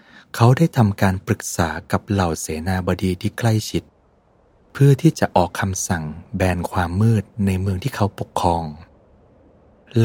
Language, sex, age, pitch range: Thai, male, 20-39, 90-115 Hz